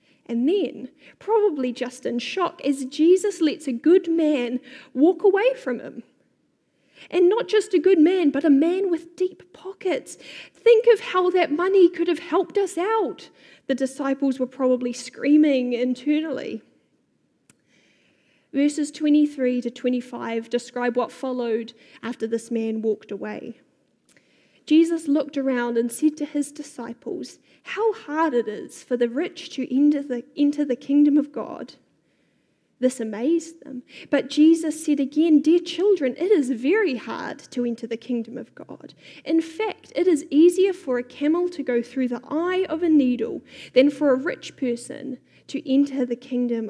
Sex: female